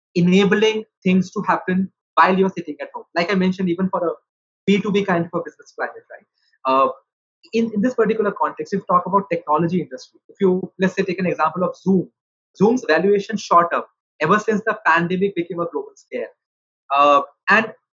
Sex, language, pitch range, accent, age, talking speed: male, English, 175-220 Hz, Indian, 20-39, 185 wpm